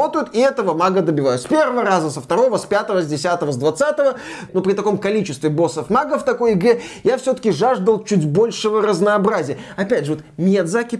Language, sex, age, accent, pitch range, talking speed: Russian, male, 20-39, native, 175-245 Hz, 190 wpm